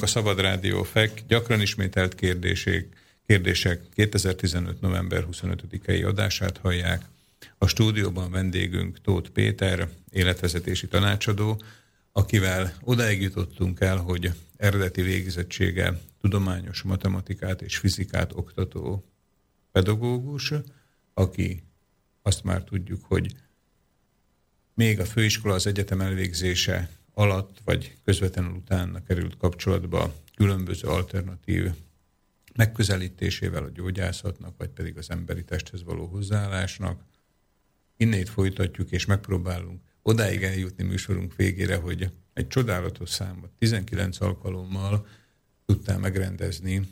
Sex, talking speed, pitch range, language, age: male, 100 wpm, 90-100 Hz, Slovak, 50-69